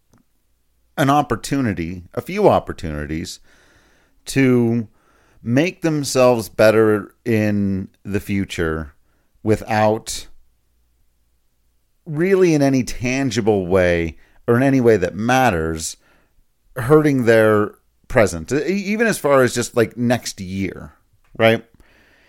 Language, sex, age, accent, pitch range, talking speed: English, male, 40-59, American, 85-135 Hz, 95 wpm